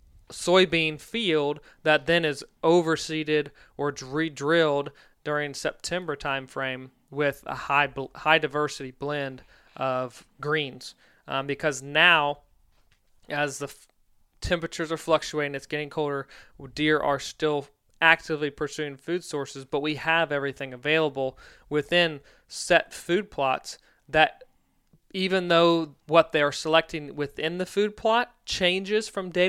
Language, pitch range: English, 145-170 Hz